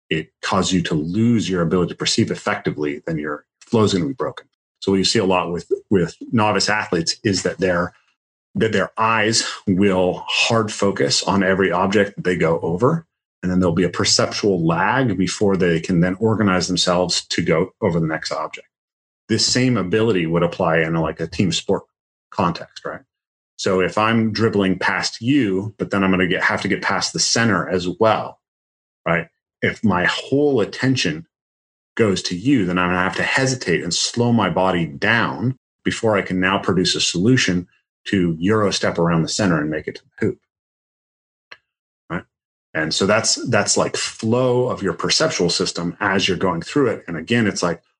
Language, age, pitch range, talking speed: English, 30-49, 90-110 Hz, 190 wpm